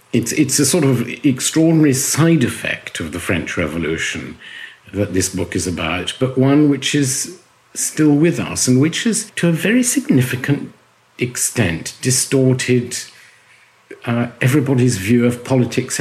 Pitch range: 95-130 Hz